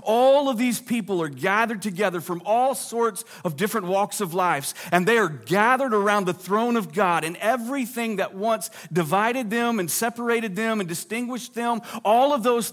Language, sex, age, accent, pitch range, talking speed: English, male, 40-59, American, 190-245 Hz, 185 wpm